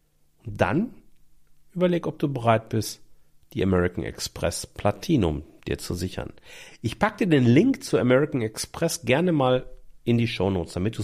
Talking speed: 160 wpm